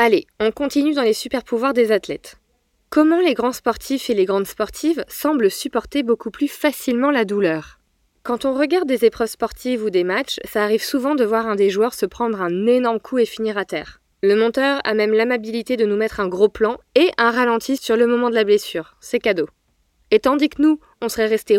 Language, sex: French, female